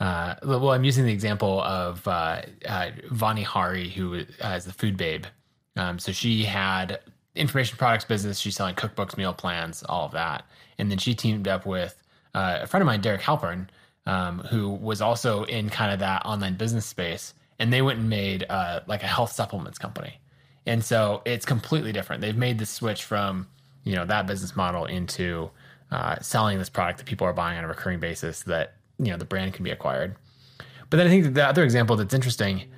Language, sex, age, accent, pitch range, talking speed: English, male, 20-39, American, 95-130 Hz, 205 wpm